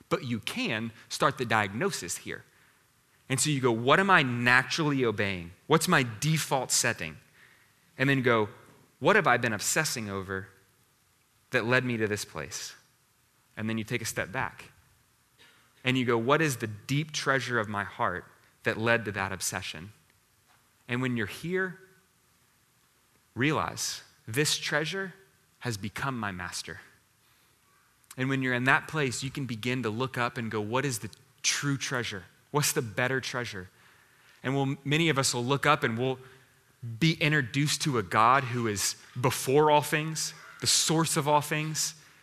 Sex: male